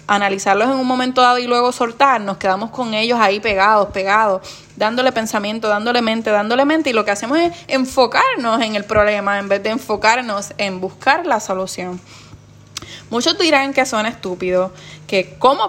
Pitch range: 195-255 Hz